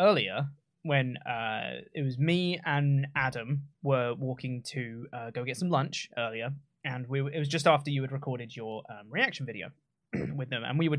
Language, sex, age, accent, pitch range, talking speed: English, male, 20-39, British, 135-170 Hz, 190 wpm